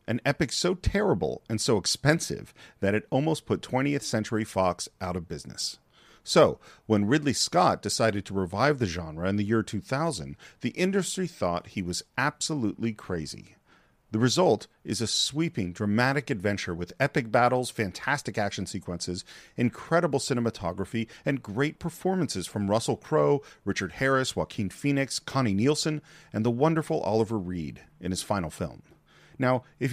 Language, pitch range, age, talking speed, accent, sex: English, 100-145 Hz, 40-59, 150 wpm, American, male